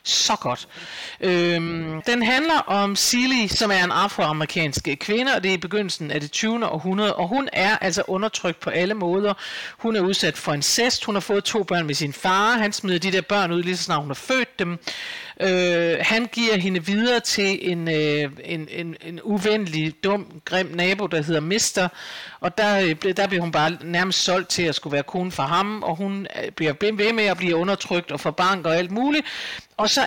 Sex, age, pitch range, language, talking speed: male, 50-69, 165-210 Hz, Danish, 205 wpm